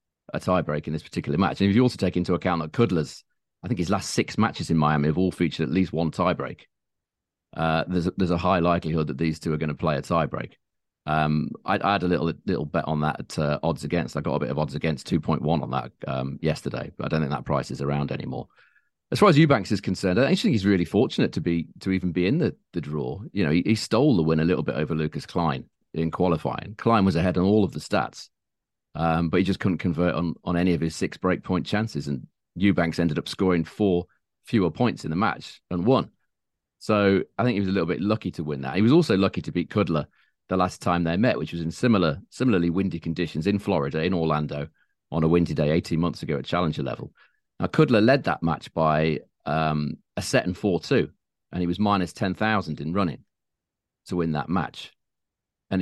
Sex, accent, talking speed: male, British, 240 wpm